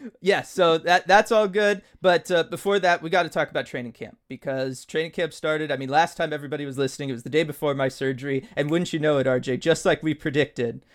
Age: 20-39